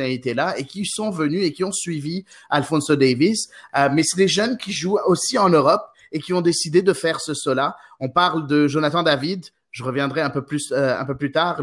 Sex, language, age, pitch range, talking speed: male, French, 30-49, 135-170 Hz, 230 wpm